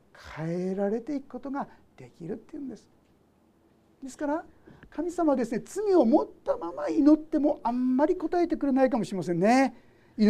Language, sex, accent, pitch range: Japanese, male, native, 210-315 Hz